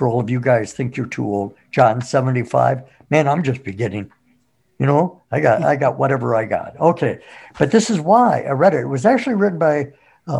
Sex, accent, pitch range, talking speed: male, American, 120-155 Hz, 215 wpm